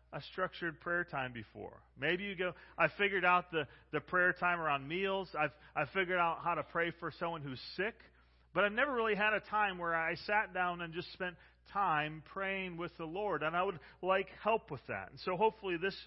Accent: American